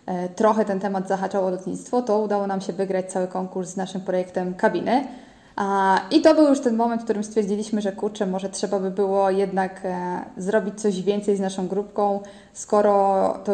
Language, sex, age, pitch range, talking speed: Polish, female, 20-39, 190-215 Hz, 180 wpm